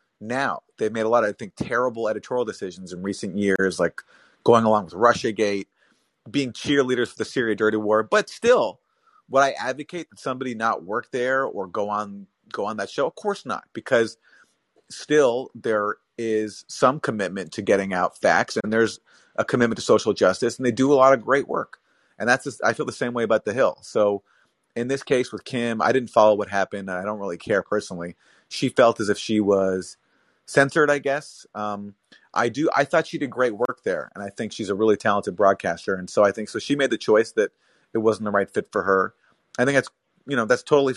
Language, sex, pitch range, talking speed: English, male, 105-130 Hz, 220 wpm